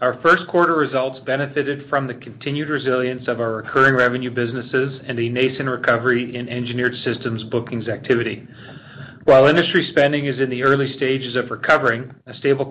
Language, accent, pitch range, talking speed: English, American, 120-135 Hz, 165 wpm